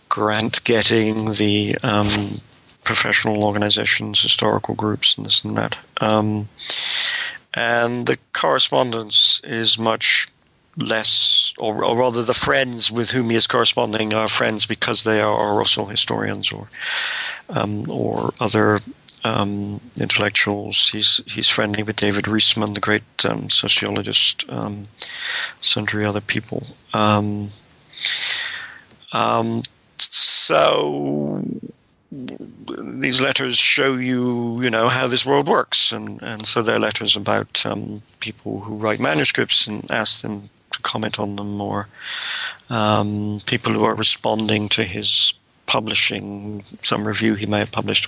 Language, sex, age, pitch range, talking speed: English, male, 50-69, 105-115 Hz, 130 wpm